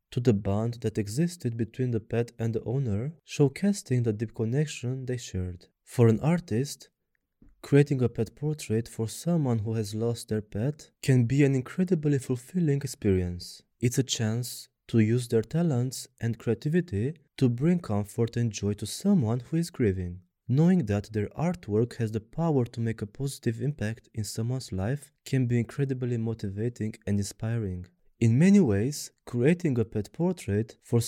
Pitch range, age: 110-140 Hz, 20-39